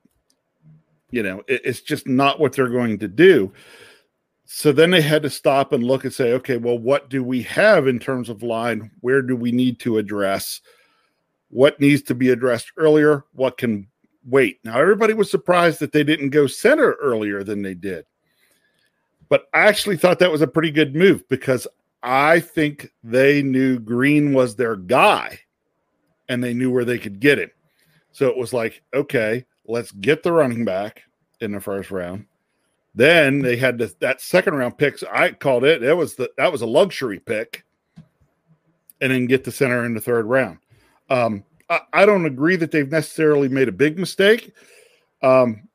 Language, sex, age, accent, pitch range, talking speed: English, male, 50-69, American, 125-155 Hz, 185 wpm